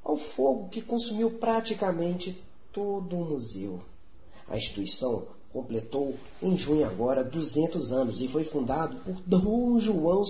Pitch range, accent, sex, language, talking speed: 130-185 Hz, Brazilian, male, Portuguese, 130 wpm